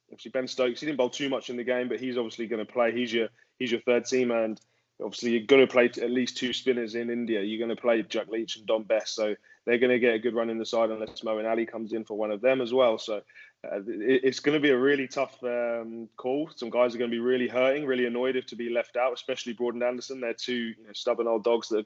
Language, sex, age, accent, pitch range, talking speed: English, male, 20-39, British, 115-130 Hz, 285 wpm